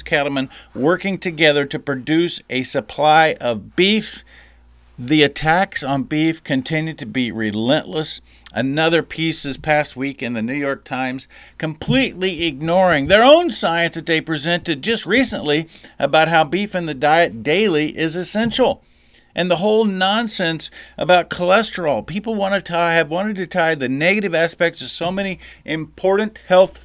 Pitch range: 130-180 Hz